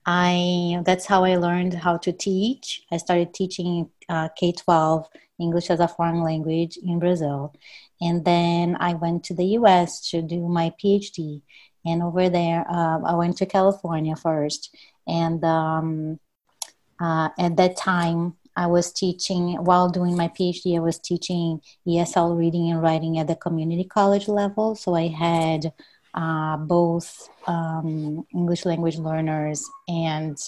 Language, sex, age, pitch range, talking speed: English, female, 30-49, 165-185 Hz, 150 wpm